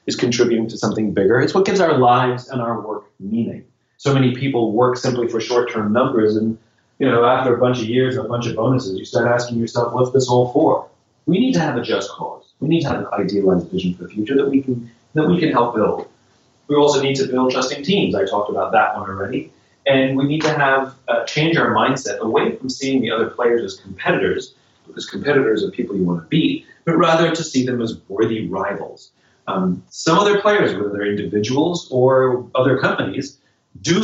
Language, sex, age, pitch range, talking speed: English, male, 30-49, 115-150 Hz, 220 wpm